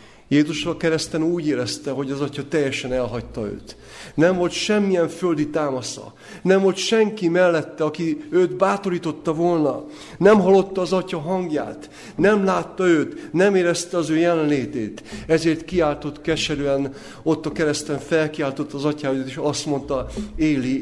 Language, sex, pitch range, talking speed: Hungarian, male, 120-160 Hz, 145 wpm